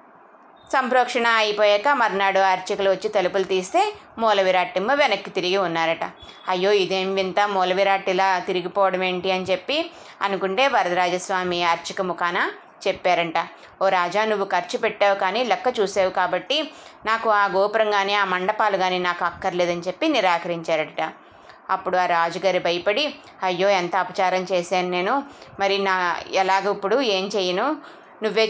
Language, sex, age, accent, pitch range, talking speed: Telugu, female, 20-39, native, 185-220 Hz, 125 wpm